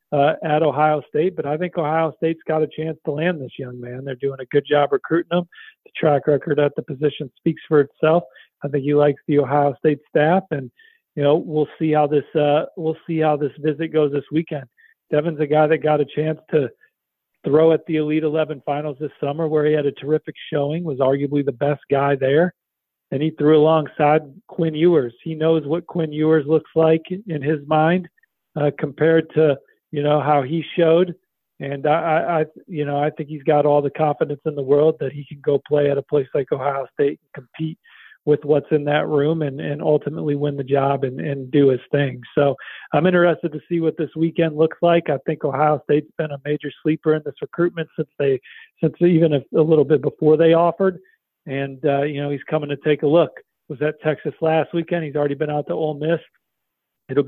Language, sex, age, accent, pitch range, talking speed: English, male, 40-59, American, 145-160 Hz, 220 wpm